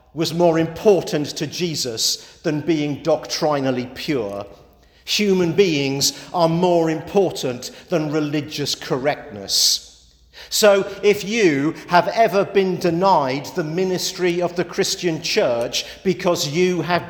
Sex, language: male, English